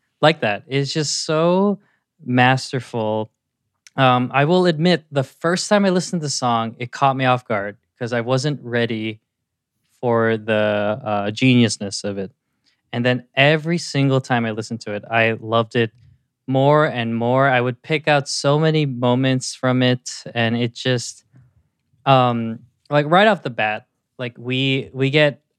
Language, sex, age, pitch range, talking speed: English, male, 20-39, 115-140 Hz, 165 wpm